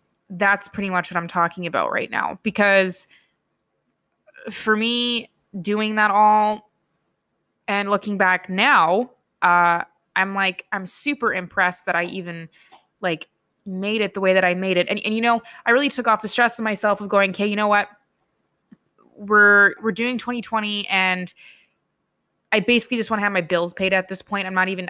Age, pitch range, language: 20-39, 185-220 Hz, English